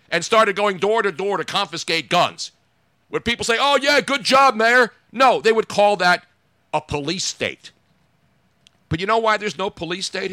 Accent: American